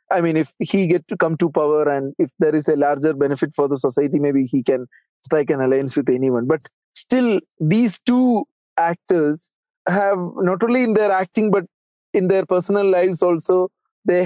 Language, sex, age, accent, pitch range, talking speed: English, male, 20-39, Indian, 145-190 Hz, 190 wpm